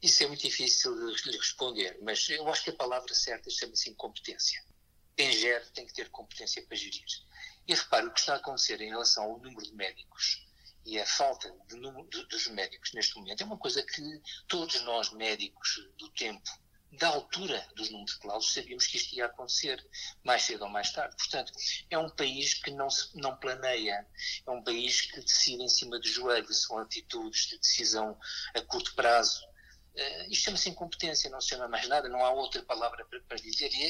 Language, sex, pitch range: Portuguese, male, 120-190 Hz